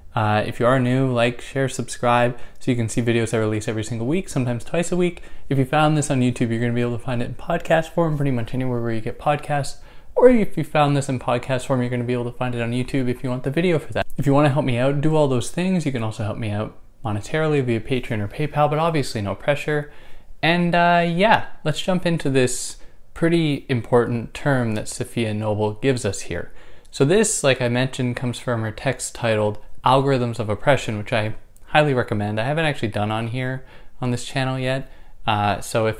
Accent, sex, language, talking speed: American, male, English, 240 wpm